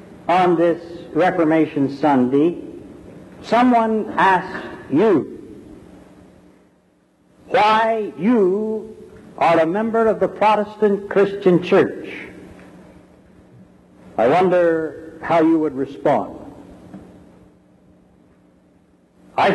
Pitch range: 155-210 Hz